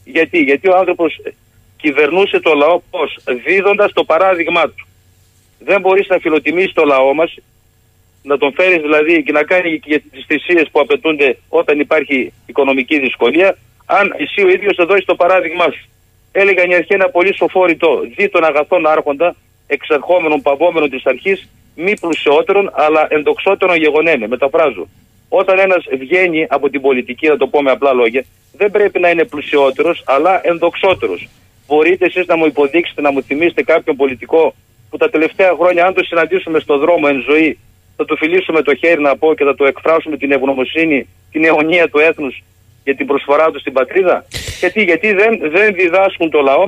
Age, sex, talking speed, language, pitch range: 40-59, male, 170 wpm, Greek, 140-185 Hz